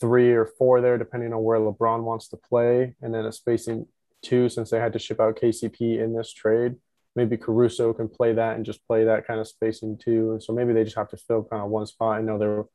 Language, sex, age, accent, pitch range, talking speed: English, male, 20-39, American, 110-120 Hz, 255 wpm